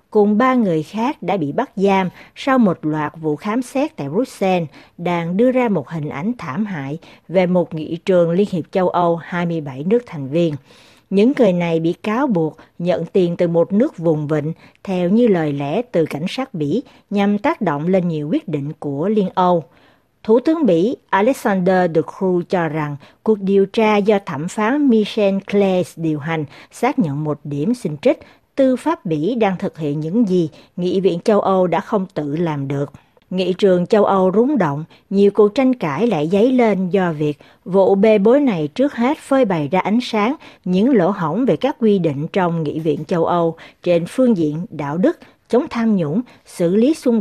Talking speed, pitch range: 200 wpm, 160-225 Hz